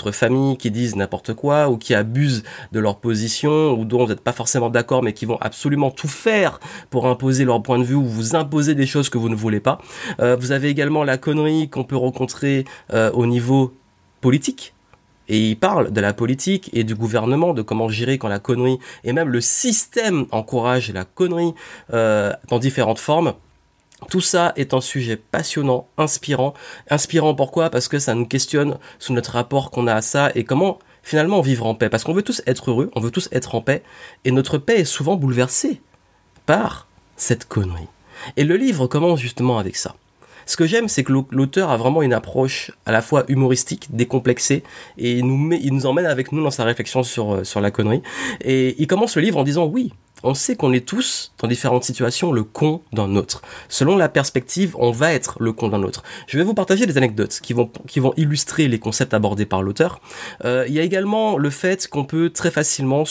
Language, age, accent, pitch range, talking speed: French, 30-49, French, 115-150 Hz, 210 wpm